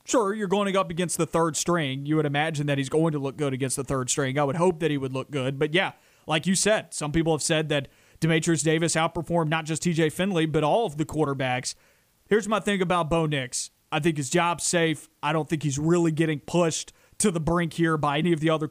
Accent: American